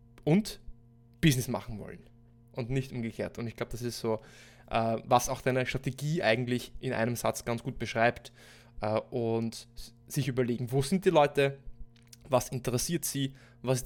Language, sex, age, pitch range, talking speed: German, male, 20-39, 120-155 Hz, 155 wpm